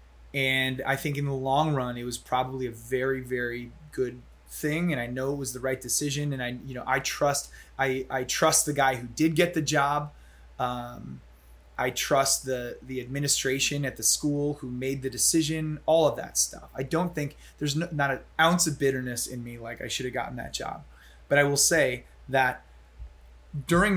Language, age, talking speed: English, 20-39, 205 wpm